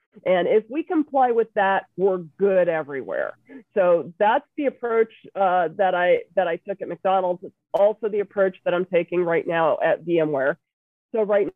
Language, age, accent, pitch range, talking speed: English, 40-59, American, 185-225 Hz, 175 wpm